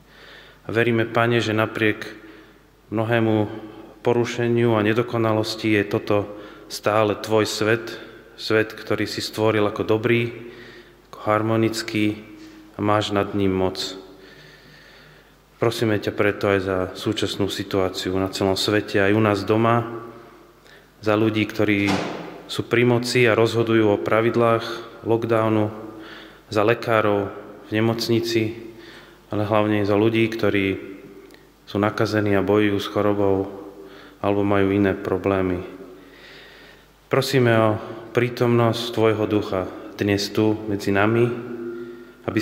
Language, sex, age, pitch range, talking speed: Slovak, male, 30-49, 100-115 Hz, 115 wpm